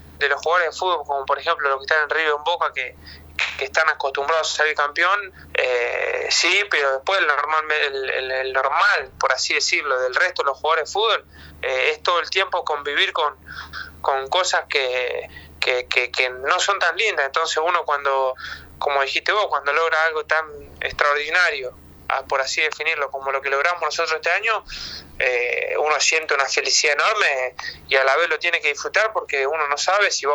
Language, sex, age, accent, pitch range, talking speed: Spanish, male, 20-39, Argentinian, 135-180 Hz, 200 wpm